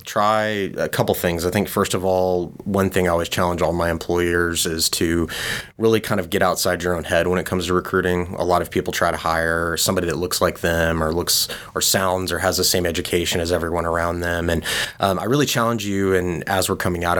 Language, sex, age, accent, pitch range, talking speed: English, male, 20-39, American, 85-95 Hz, 235 wpm